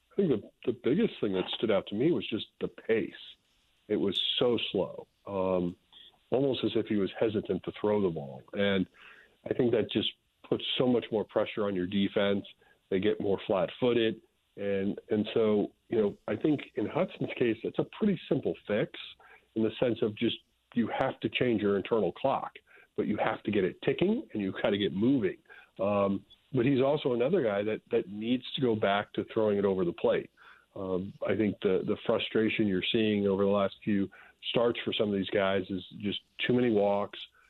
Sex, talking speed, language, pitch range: male, 210 wpm, English, 95-110 Hz